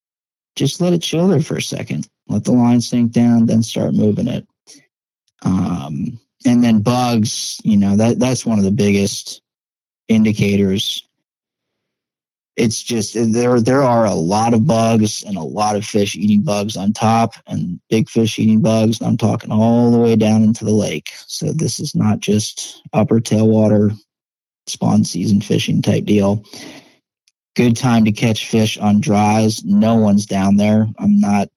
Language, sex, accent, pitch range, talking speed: English, male, American, 105-120 Hz, 165 wpm